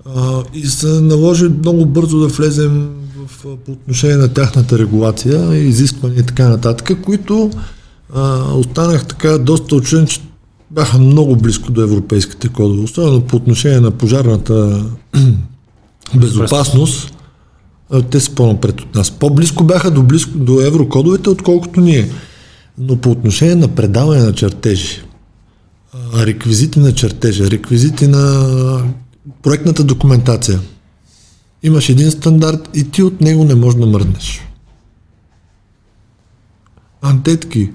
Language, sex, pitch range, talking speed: Bulgarian, male, 110-150 Hz, 120 wpm